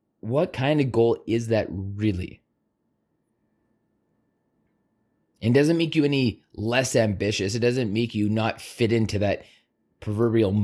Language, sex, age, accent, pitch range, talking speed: English, male, 20-39, American, 105-125 Hz, 130 wpm